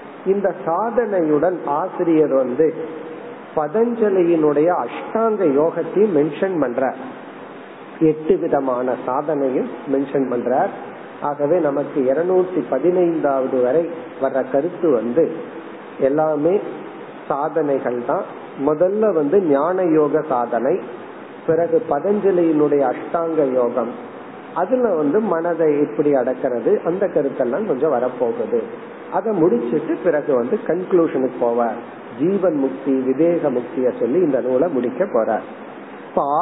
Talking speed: 35 wpm